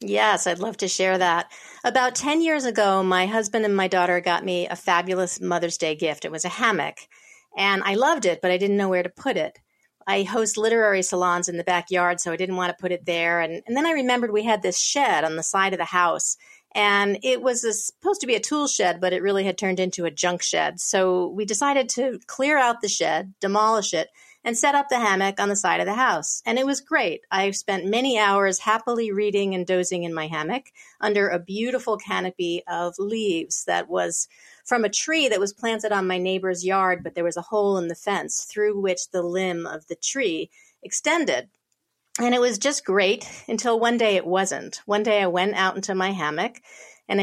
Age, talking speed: 40-59, 220 wpm